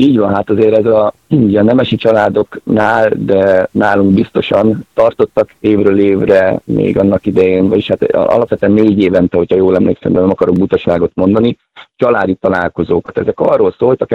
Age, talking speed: 30-49, 155 wpm